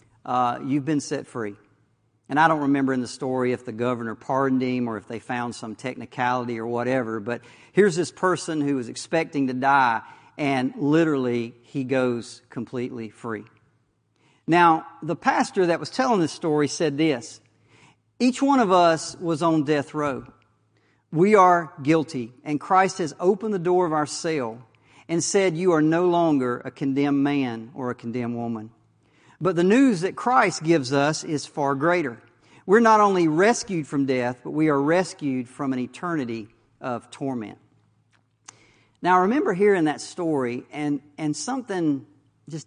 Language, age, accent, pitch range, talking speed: English, 50-69, American, 120-165 Hz, 165 wpm